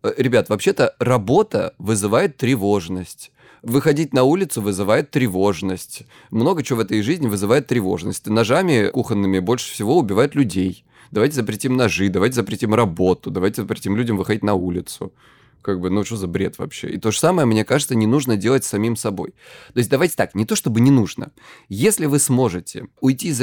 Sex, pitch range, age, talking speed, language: male, 100-130 Hz, 20-39, 170 wpm, Ukrainian